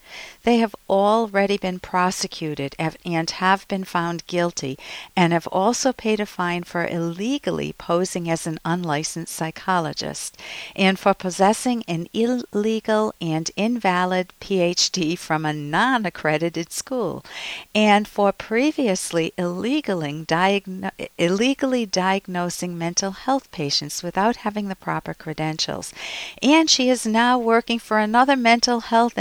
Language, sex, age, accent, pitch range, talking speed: English, female, 50-69, American, 170-215 Hz, 120 wpm